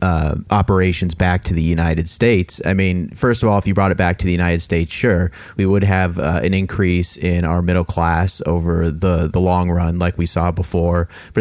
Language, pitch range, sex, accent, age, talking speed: English, 85-100 Hz, male, American, 30-49, 220 wpm